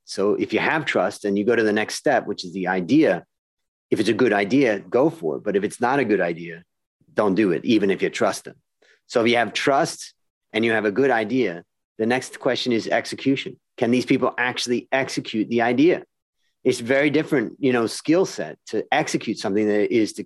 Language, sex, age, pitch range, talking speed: English, male, 40-59, 100-130 Hz, 220 wpm